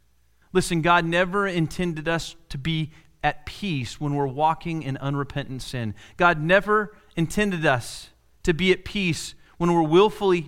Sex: male